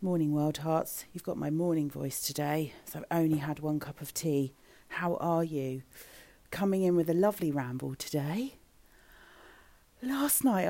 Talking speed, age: 165 wpm, 40-59